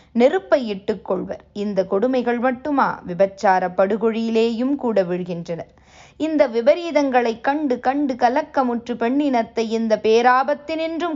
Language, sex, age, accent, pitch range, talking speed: Tamil, female, 20-39, native, 195-250 Hz, 85 wpm